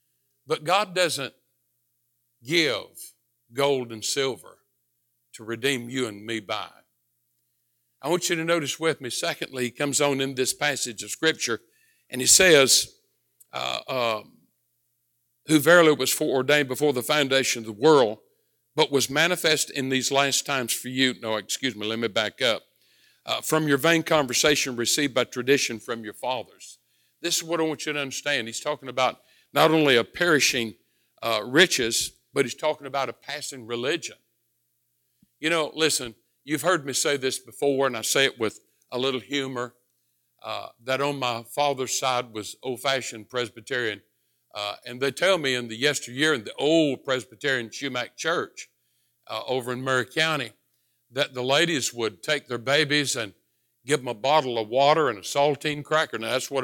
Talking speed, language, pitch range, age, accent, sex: 170 wpm, English, 115-145 Hz, 60-79, American, male